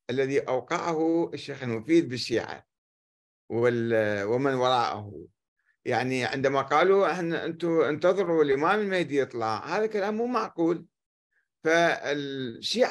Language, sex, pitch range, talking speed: Arabic, male, 125-190 Hz, 95 wpm